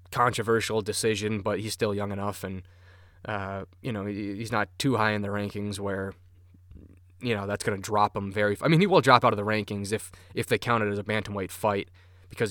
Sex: male